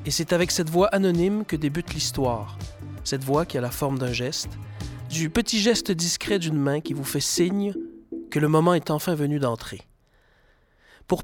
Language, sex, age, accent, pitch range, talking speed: French, male, 40-59, French, 140-190 Hz, 185 wpm